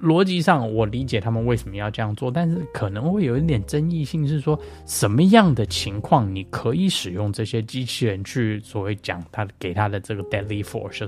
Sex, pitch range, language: male, 105-160 Hz, Chinese